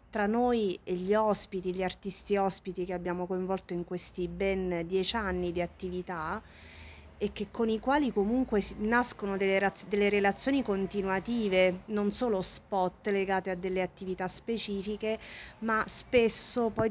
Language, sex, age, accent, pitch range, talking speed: Italian, female, 30-49, native, 185-225 Hz, 140 wpm